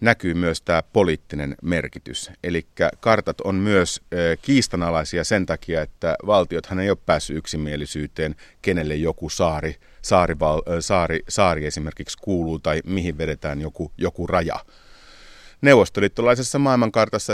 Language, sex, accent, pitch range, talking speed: Finnish, male, native, 80-100 Hz, 120 wpm